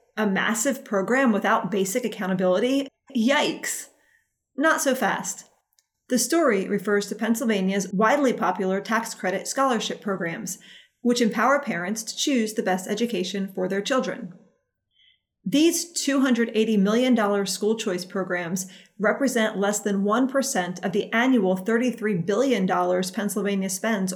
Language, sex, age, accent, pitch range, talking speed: English, female, 30-49, American, 195-245 Hz, 120 wpm